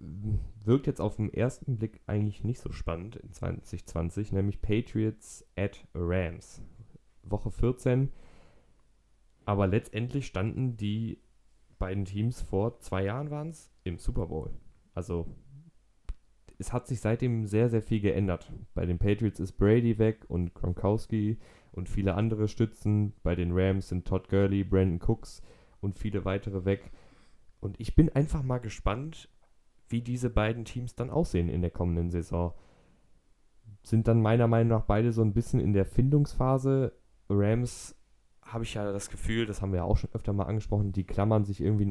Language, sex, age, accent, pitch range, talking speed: German, male, 10-29, German, 95-115 Hz, 160 wpm